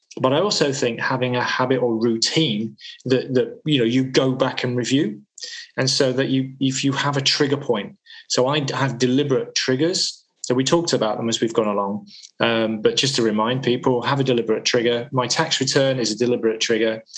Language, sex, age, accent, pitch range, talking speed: English, male, 20-39, British, 115-140 Hz, 205 wpm